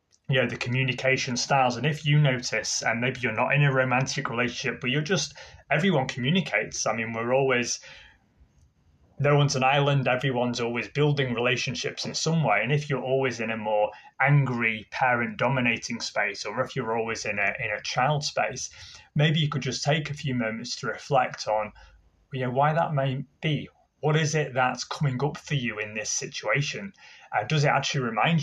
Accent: British